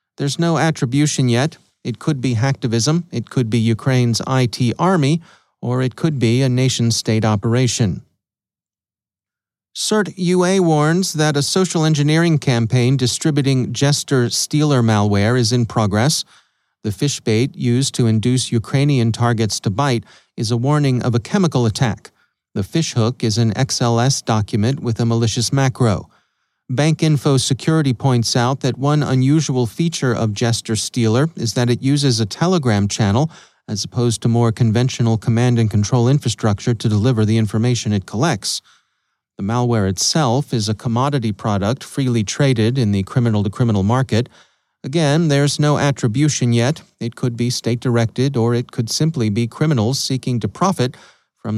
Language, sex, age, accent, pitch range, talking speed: English, male, 40-59, American, 115-140 Hz, 150 wpm